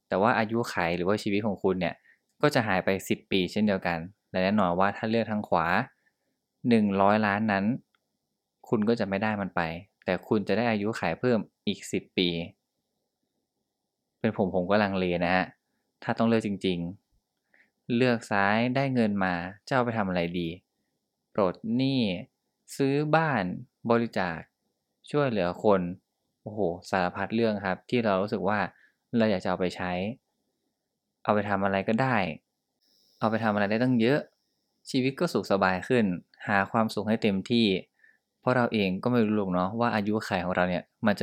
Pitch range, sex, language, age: 95-115 Hz, male, Thai, 20-39